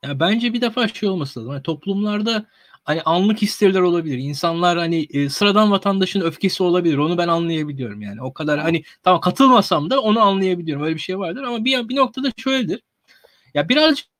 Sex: male